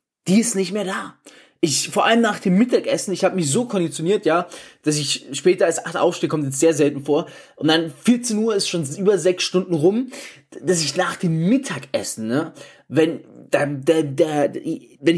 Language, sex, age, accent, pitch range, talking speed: German, male, 20-39, German, 160-210 Hz, 195 wpm